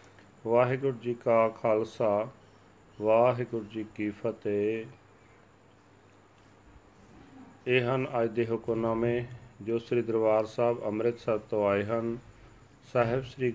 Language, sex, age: Punjabi, male, 40-59